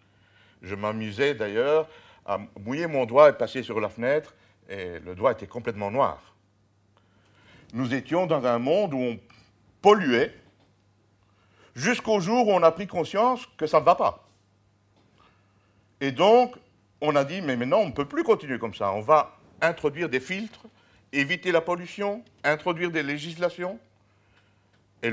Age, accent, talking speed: 60-79, French, 155 wpm